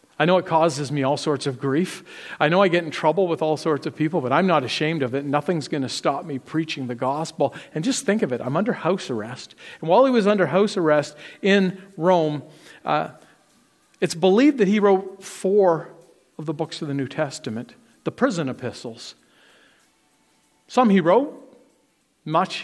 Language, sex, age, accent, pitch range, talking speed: English, male, 50-69, American, 140-195 Hz, 195 wpm